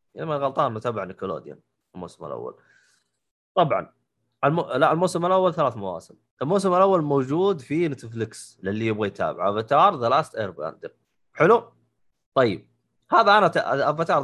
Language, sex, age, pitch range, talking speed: Arabic, male, 20-39, 120-180 Hz, 135 wpm